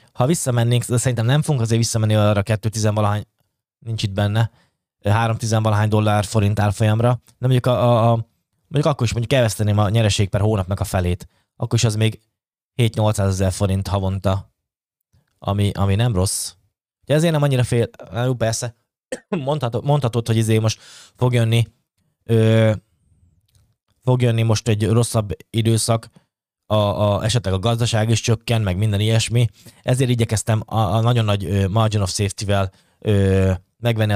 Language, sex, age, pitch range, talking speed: Hungarian, male, 20-39, 100-120 Hz, 155 wpm